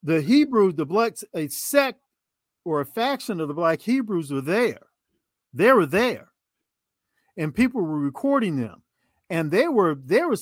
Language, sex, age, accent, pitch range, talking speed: English, male, 50-69, American, 145-185 Hz, 160 wpm